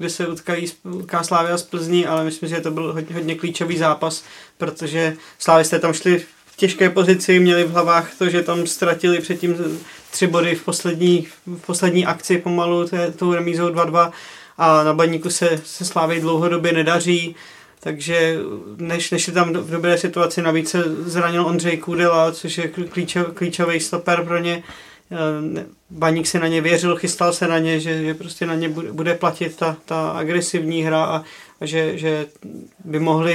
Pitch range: 160-175 Hz